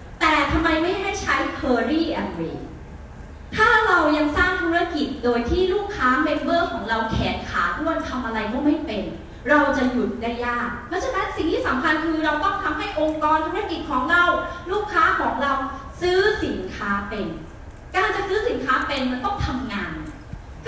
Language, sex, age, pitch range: Thai, female, 30-49, 250-355 Hz